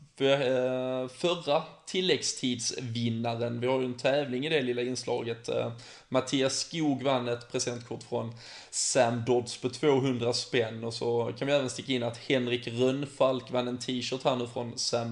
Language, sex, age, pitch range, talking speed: Swedish, male, 20-39, 120-140 Hz, 160 wpm